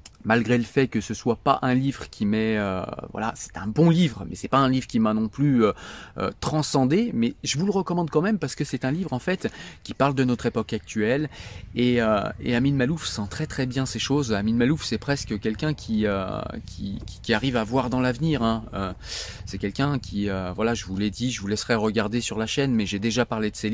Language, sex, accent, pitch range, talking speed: French, male, French, 110-135 Hz, 250 wpm